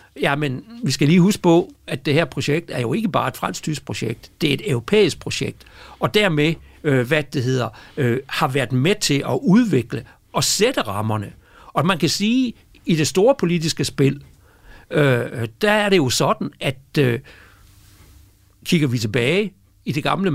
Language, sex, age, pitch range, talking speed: Danish, male, 60-79, 120-165 Hz, 185 wpm